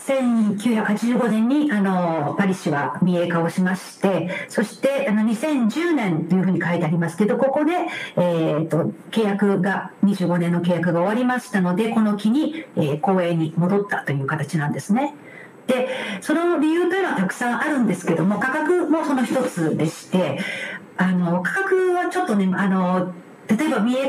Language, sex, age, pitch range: Japanese, female, 50-69, 180-250 Hz